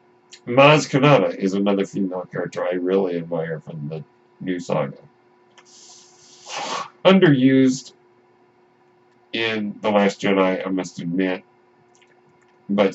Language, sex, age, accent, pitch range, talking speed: English, male, 50-69, American, 95-120 Hz, 100 wpm